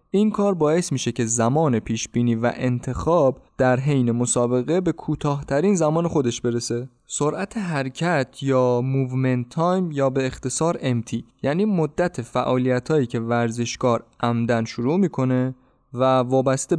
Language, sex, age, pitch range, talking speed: Persian, male, 20-39, 120-155 Hz, 130 wpm